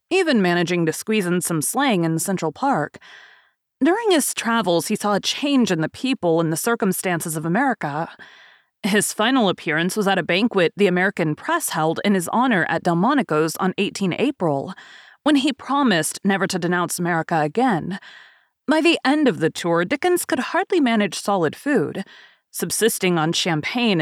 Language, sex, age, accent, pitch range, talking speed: English, female, 30-49, American, 165-245 Hz, 165 wpm